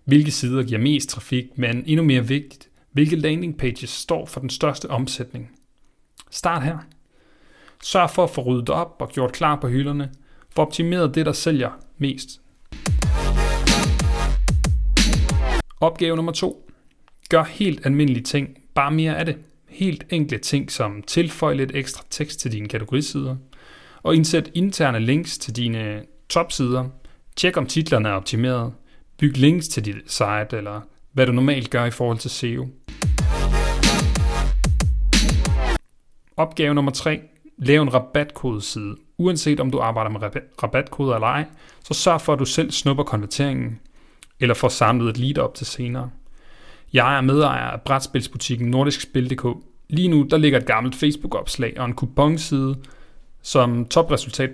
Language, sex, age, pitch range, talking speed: Danish, male, 30-49, 125-150 Hz, 145 wpm